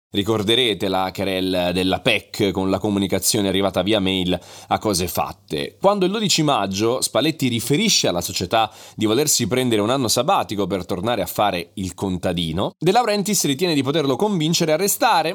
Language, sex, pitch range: Italian, male, 100-155 Hz